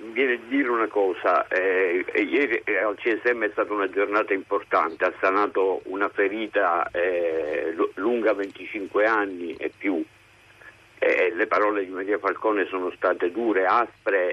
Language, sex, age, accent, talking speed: Italian, male, 50-69, native, 145 wpm